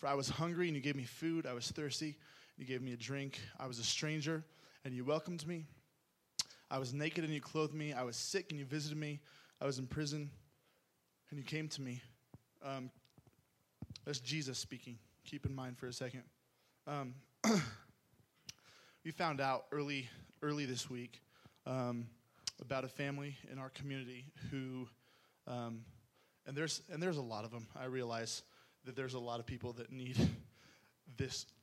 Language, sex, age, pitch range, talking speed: English, male, 20-39, 125-145 Hz, 180 wpm